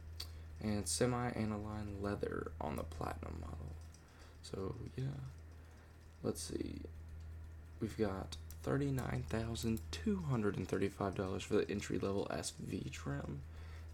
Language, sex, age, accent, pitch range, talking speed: English, male, 20-39, American, 80-100 Hz, 90 wpm